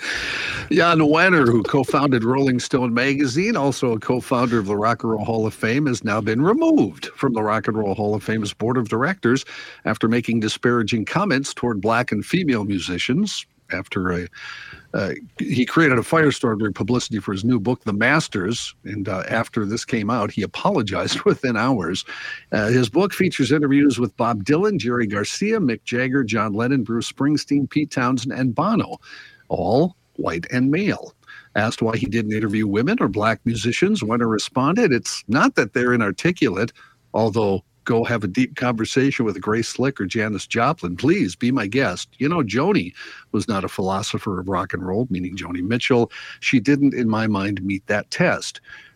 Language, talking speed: English, 180 wpm